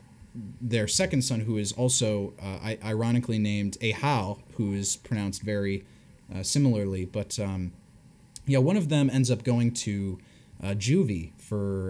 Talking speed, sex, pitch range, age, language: 145 wpm, male, 100-120 Hz, 20-39, English